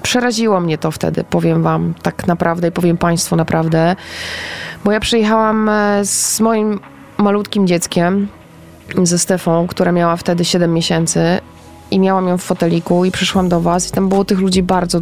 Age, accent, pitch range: 20-39, native, 175-205 Hz